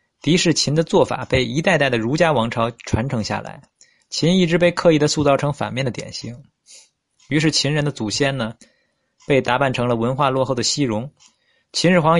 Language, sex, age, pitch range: Chinese, male, 20-39, 120-160 Hz